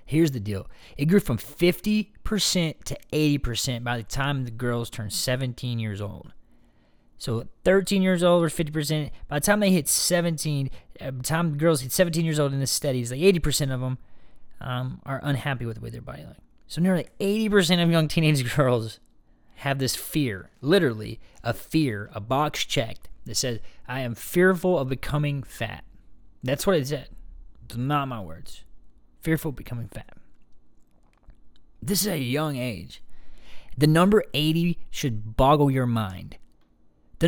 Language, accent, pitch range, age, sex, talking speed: English, American, 115-160 Hz, 20-39, male, 170 wpm